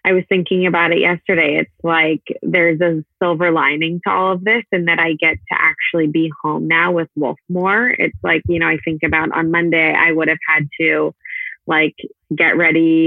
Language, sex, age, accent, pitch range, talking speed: English, female, 20-39, American, 160-175 Hz, 200 wpm